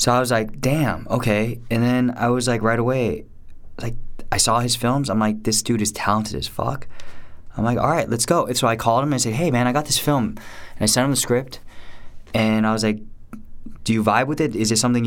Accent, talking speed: American, 255 wpm